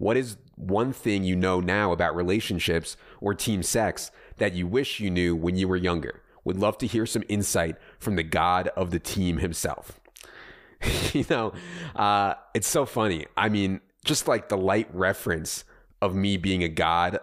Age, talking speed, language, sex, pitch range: 30-49, 180 wpm, English, male, 85-105 Hz